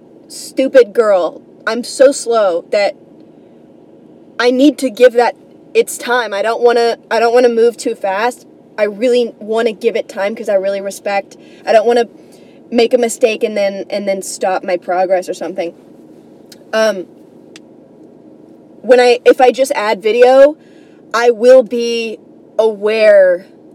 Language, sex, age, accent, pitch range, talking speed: English, female, 20-39, American, 210-275 Hz, 160 wpm